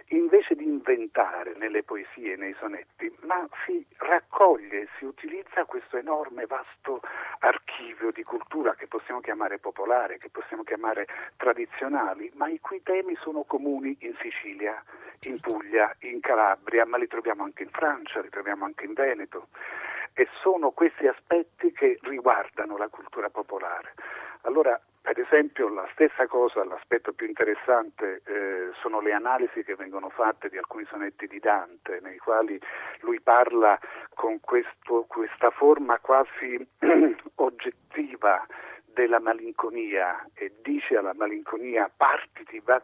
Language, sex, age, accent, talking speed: Italian, male, 50-69, native, 135 wpm